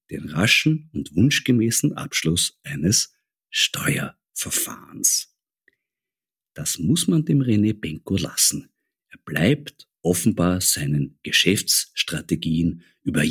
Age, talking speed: 50-69, 90 wpm